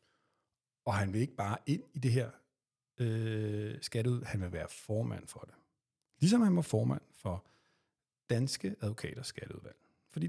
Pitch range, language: 105-140 Hz, Danish